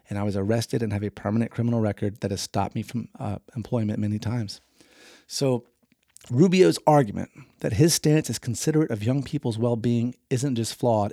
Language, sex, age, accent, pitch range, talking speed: English, male, 30-49, American, 110-140 Hz, 185 wpm